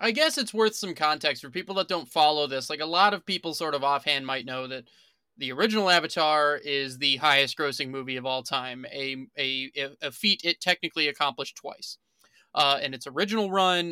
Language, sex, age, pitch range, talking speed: English, male, 20-39, 140-180 Hz, 205 wpm